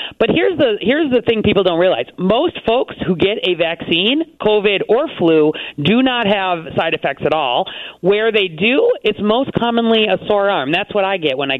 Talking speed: 205 wpm